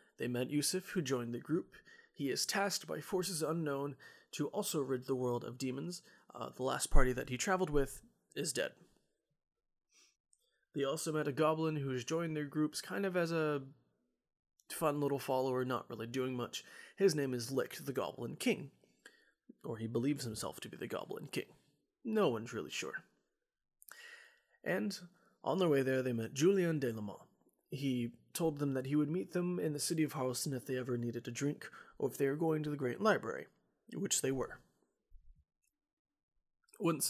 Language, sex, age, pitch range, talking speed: English, male, 30-49, 125-170 Hz, 185 wpm